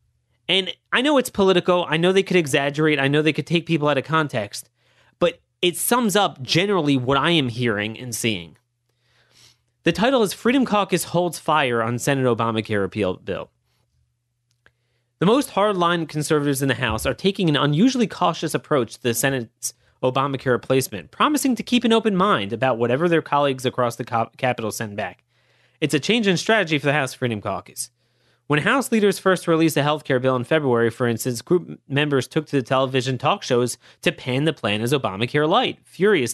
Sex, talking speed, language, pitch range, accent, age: male, 190 wpm, English, 120-165 Hz, American, 30-49